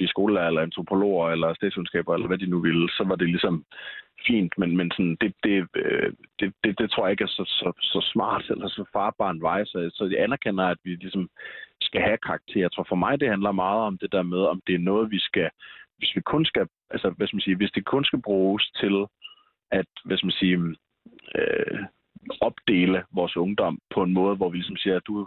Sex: male